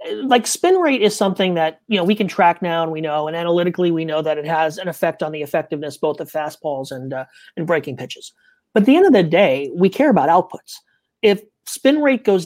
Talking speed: 240 wpm